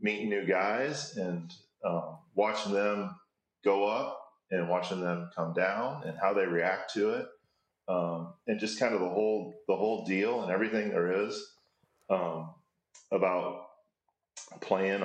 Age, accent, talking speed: 30-49, American, 150 wpm